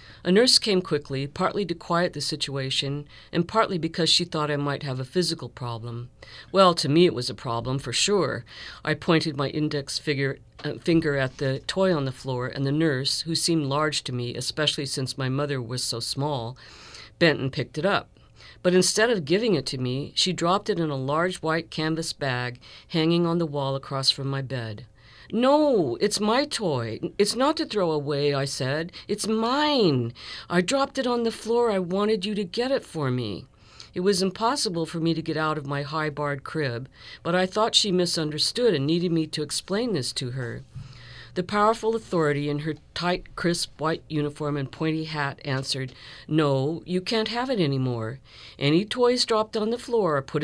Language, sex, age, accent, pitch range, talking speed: English, female, 50-69, American, 135-180 Hz, 195 wpm